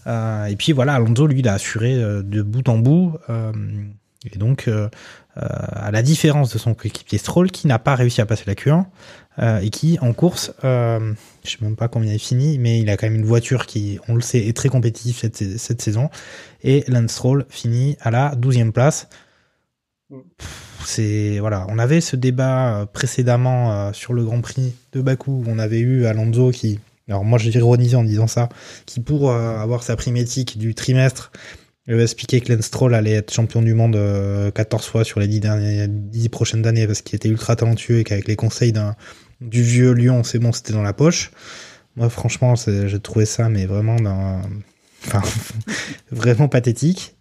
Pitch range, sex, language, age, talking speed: 110-130 Hz, male, French, 20-39, 200 wpm